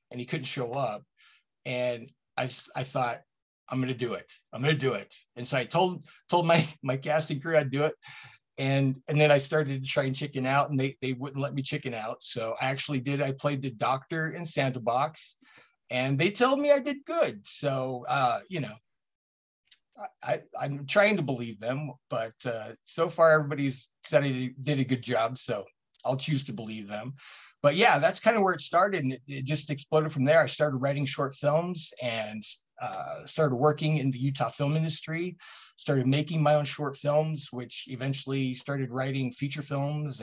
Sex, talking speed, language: male, 195 wpm, English